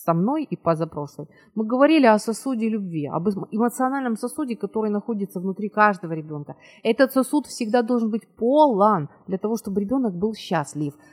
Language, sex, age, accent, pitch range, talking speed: Ukrainian, female, 30-49, native, 195-255 Hz, 160 wpm